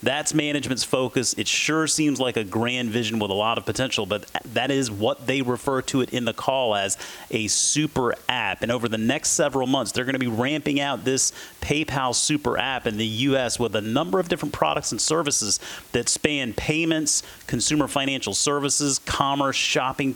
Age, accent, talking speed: 30-49, American, 195 wpm